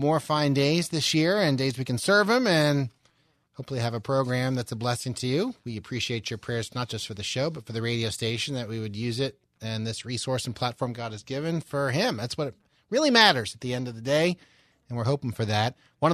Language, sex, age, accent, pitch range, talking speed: English, male, 30-49, American, 120-150 Hz, 245 wpm